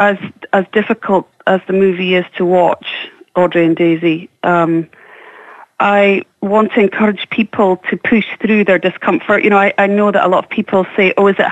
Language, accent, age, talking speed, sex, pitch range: English, British, 30-49, 195 wpm, female, 180-210 Hz